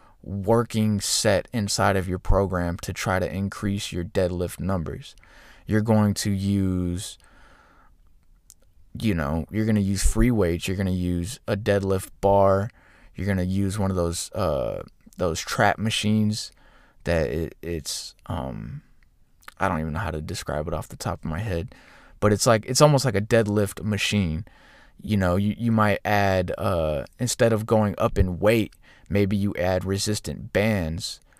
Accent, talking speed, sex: American, 165 wpm, male